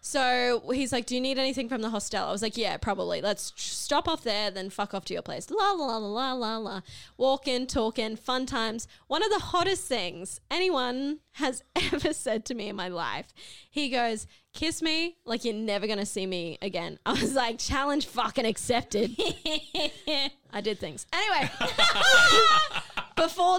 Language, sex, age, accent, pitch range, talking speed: English, female, 10-29, Australian, 215-275 Hz, 185 wpm